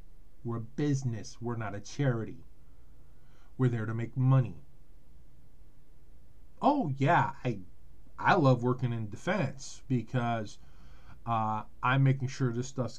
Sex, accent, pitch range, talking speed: male, American, 120-145 Hz, 125 wpm